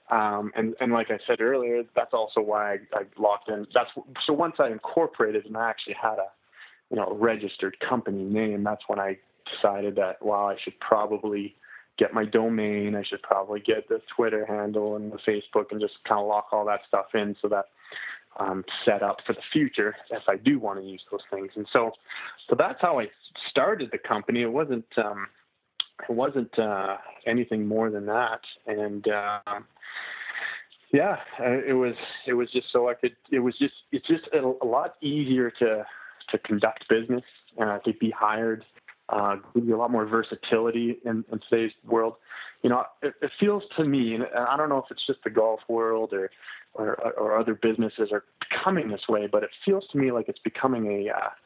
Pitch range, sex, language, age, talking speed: 105-120 Hz, male, English, 20-39, 200 wpm